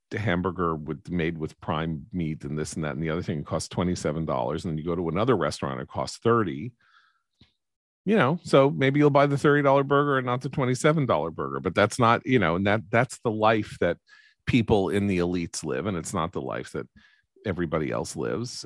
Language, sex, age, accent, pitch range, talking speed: English, male, 40-59, American, 85-115 Hz, 210 wpm